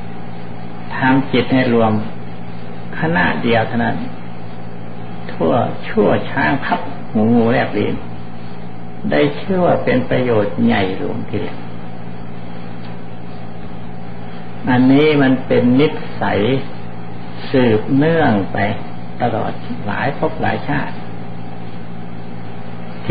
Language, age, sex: Thai, 60-79, male